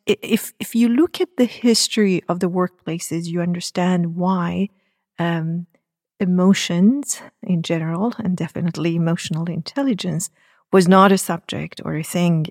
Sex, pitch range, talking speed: female, 170-200 Hz, 135 wpm